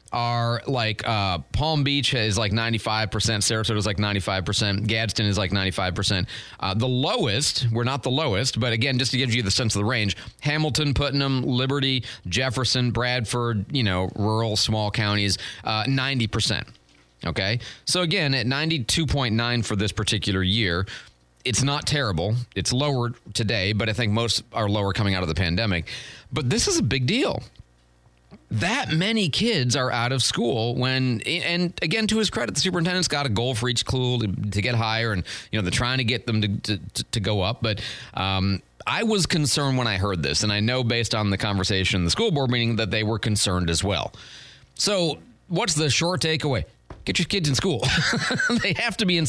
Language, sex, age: English, male, 30-49